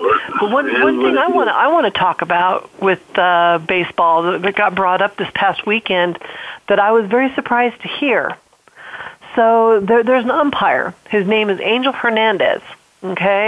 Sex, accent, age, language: female, American, 40-59, English